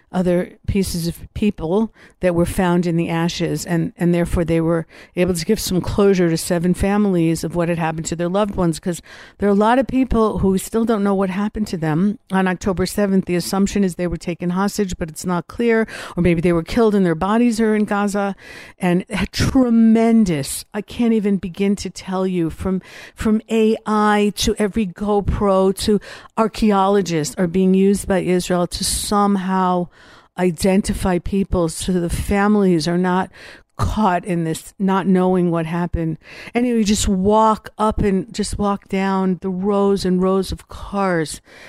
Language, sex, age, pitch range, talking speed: English, female, 60-79, 175-205 Hz, 180 wpm